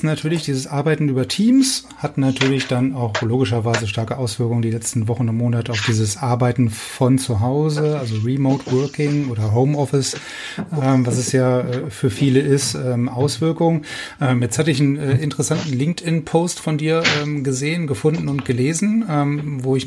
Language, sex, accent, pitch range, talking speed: German, male, German, 125-150 Hz, 170 wpm